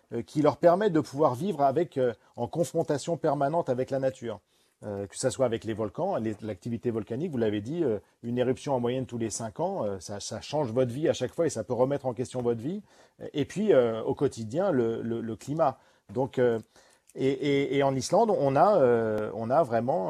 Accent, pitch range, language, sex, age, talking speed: French, 110-135 Hz, French, male, 40-59, 225 wpm